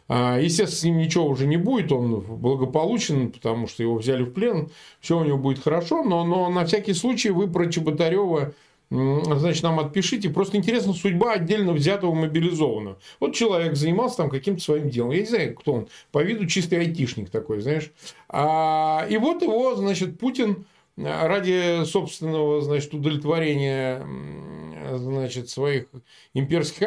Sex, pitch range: male, 140-195 Hz